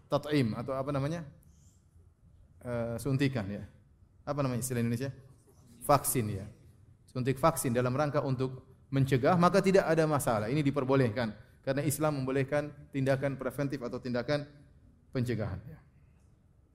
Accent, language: native, Indonesian